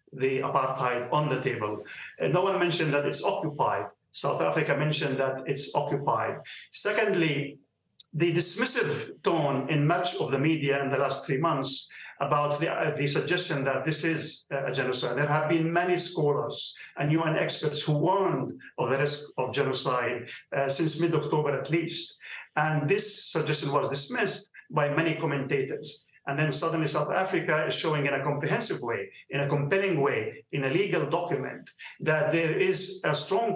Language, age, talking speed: English, 50-69, 165 wpm